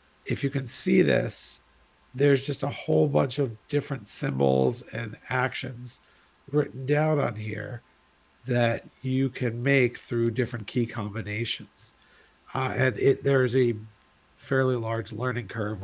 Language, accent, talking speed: English, American, 135 wpm